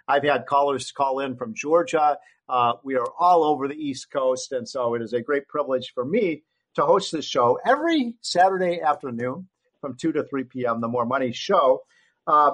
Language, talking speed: English, 195 wpm